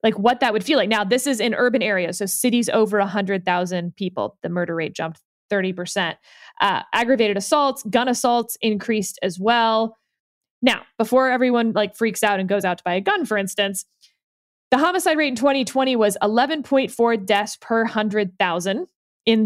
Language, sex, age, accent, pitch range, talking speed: English, female, 20-39, American, 205-270 Hz, 170 wpm